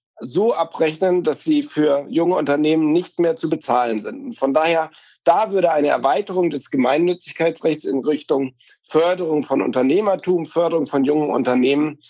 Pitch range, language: 140-175 Hz, German